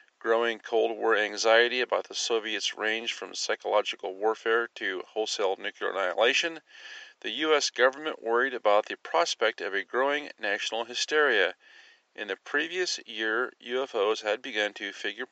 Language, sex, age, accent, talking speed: English, male, 40-59, American, 140 wpm